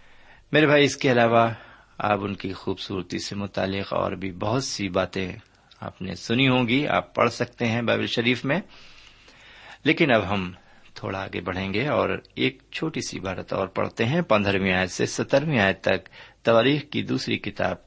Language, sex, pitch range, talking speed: Urdu, male, 95-130 Hz, 180 wpm